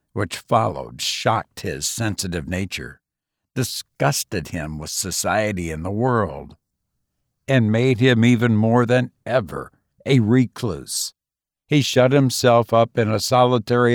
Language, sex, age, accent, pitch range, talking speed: English, male, 60-79, American, 105-125 Hz, 125 wpm